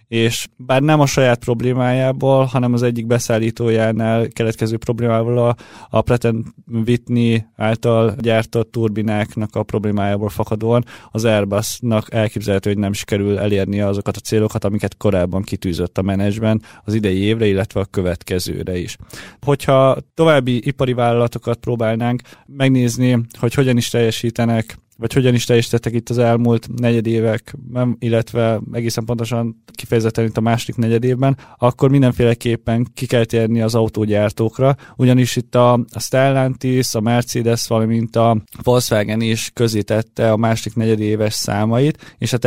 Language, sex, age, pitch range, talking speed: Hungarian, male, 20-39, 110-120 Hz, 140 wpm